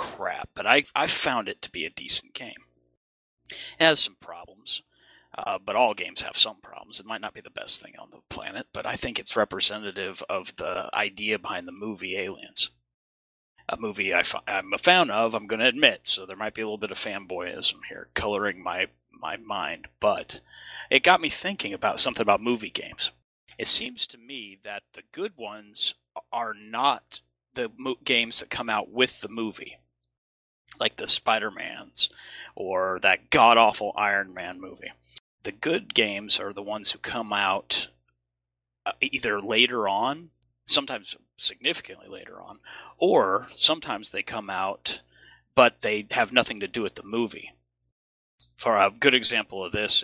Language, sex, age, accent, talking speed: English, male, 30-49, American, 170 wpm